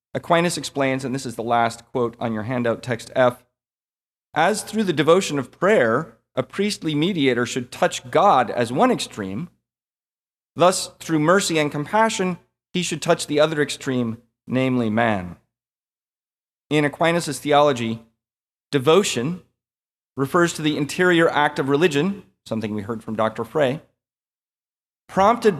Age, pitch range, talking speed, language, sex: 30-49, 120-165 Hz, 140 wpm, English, male